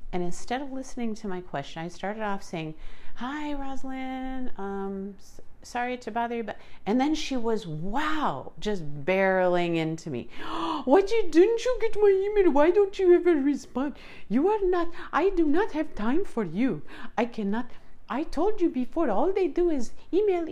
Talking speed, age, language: 185 wpm, 50-69, English